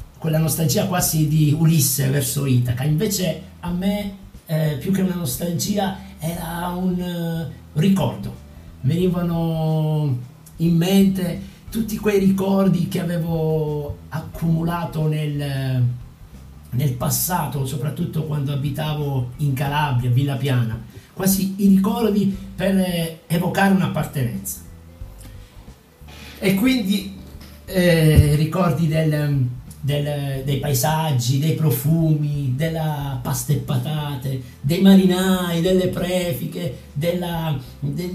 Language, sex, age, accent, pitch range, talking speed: Italian, male, 50-69, native, 140-180 Hz, 100 wpm